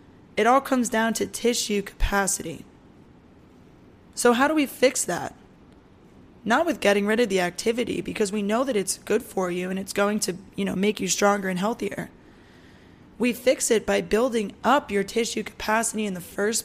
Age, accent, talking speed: 20-39, American, 185 wpm